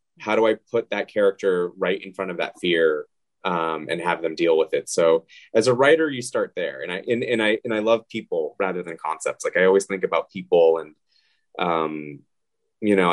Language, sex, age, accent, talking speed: English, male, 20-39, American, 225 wpm